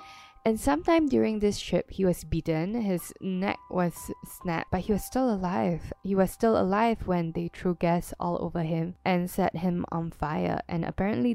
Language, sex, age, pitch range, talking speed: English, female, 10-29, 170-225 Hz, 185 wpm